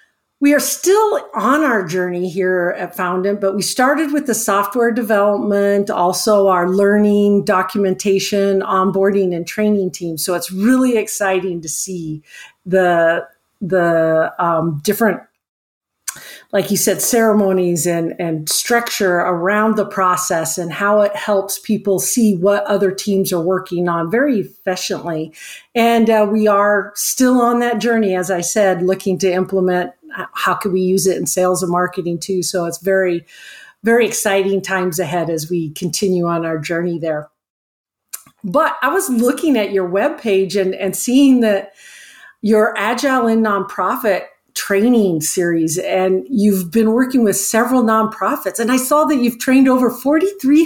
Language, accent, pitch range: English, American, 185-230 Hz